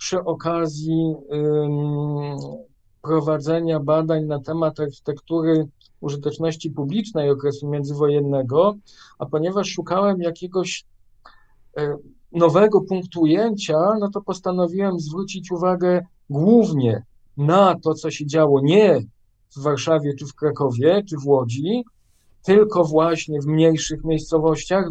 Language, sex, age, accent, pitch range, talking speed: Polish, male, 50-69, native, 145-170 Hz, 105 wpm